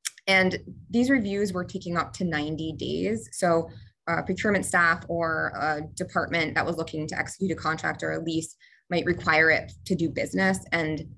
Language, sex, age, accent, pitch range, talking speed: English, female, 20-39, American, 160-190 Hz, 175 wpm